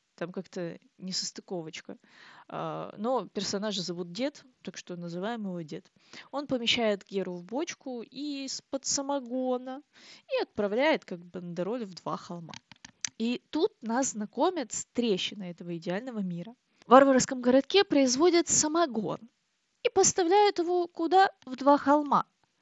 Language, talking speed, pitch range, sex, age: Russian, 125 wpm, 190-275 Hz, female, 20-39